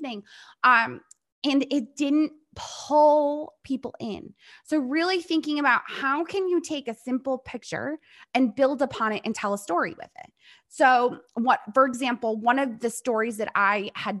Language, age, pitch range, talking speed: English, 20-39, 210-275 Hz, 170 wpm